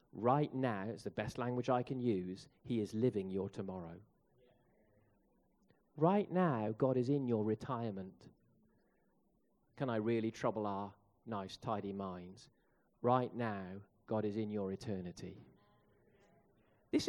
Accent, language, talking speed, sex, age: British, English, 130 wpm, male, 40-59